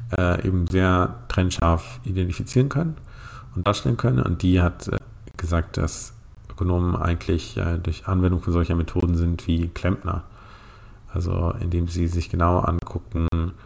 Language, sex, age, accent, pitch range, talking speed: German, male, 40-59, German, 85-100 Hz, 130 wpm